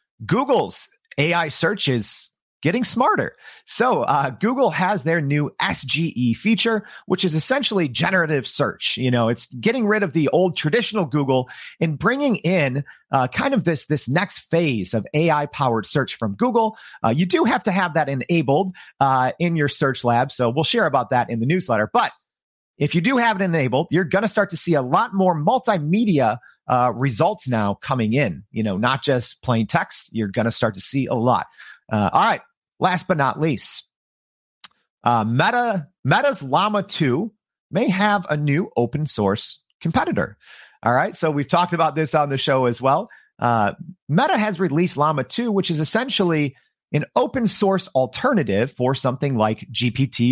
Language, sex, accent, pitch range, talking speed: English, male, American, 125-185 Hz, 175 wpm